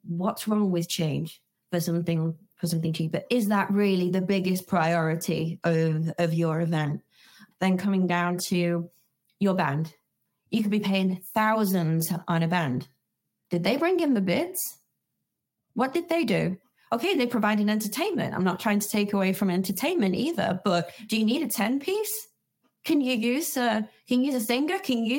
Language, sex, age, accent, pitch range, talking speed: English, female, 20-39, British, 175-235 Hz, 175 wpm